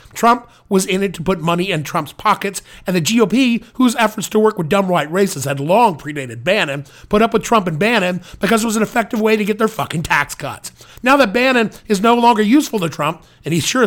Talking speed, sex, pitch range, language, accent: 240 wpm, male, 160-225 Hz, English, American